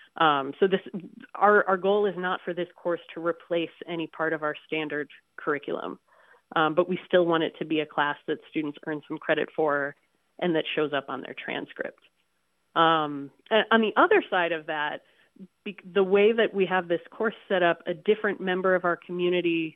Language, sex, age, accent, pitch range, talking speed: English, female, 30-49, American, 155-190 Hz, 195 wpm